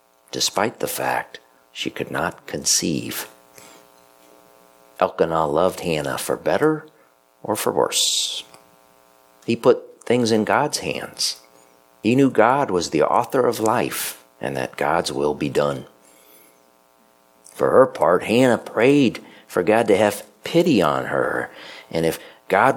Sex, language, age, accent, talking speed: male, English, 50-69, American, 130 wpm